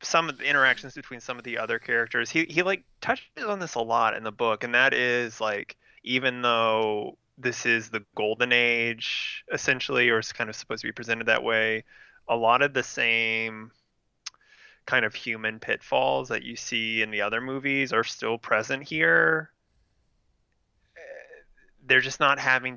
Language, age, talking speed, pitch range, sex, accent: English, 20-39, 175 wpm, 105-125 Hz, male, American